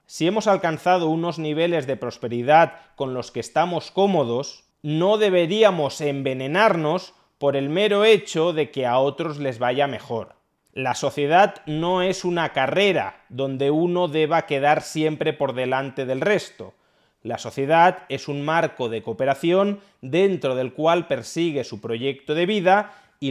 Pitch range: 135-180 Hz